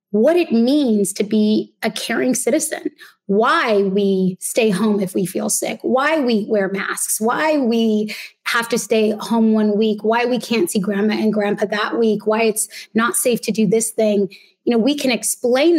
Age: 20-39